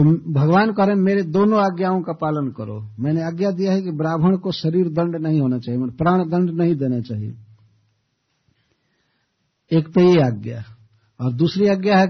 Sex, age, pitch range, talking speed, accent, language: male, 60-79, 125-190 Hz, 165 wpm, native, Hindi